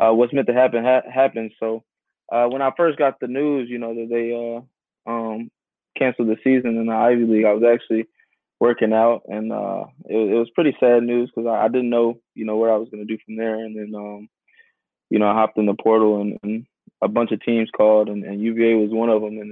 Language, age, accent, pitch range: English, 20-39, American, 110-125 Hz